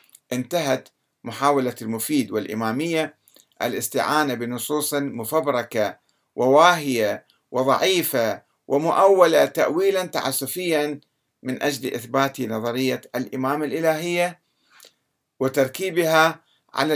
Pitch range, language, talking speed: 115-155 Hz, Arabic, 70 wpm